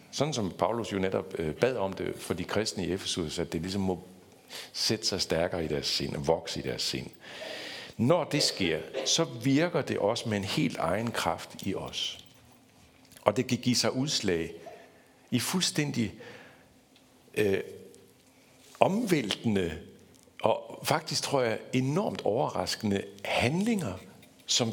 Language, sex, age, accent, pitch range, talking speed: Danish, male, 60-79, native, 90-130 Hz, 145 wpm